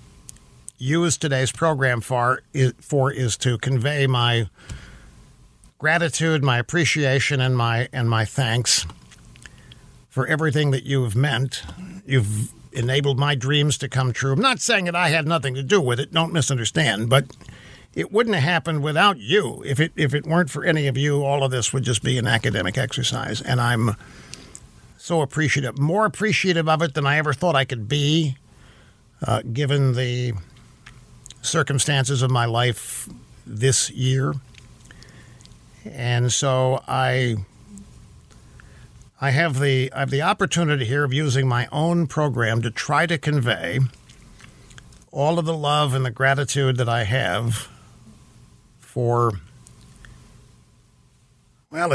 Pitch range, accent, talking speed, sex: 125-150 Hz, American, 145 wpm, male